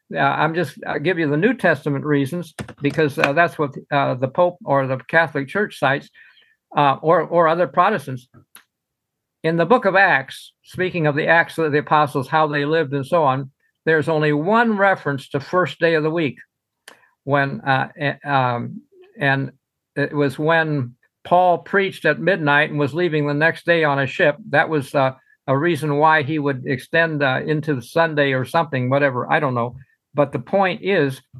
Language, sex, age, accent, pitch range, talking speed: English, male, 60-79, American, 140-170 Hz, 185 wpm